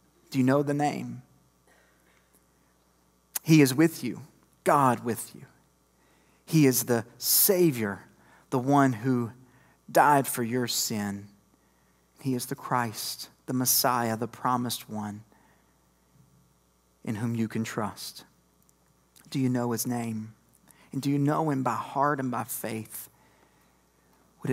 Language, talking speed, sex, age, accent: English, 130 wpm, male, 40-59, American